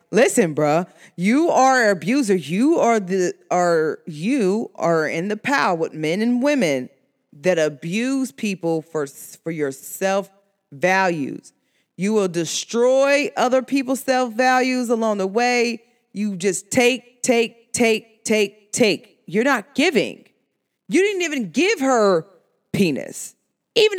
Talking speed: 135 wpm